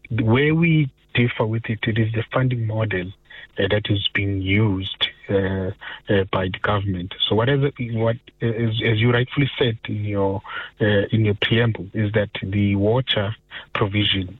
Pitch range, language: 100-115 Hz, English